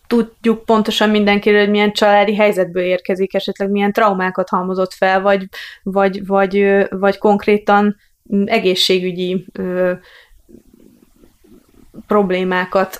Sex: female